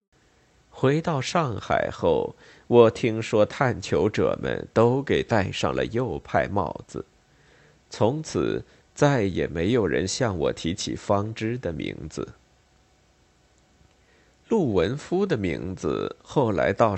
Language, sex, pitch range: Chinese, male, 100-145 Hz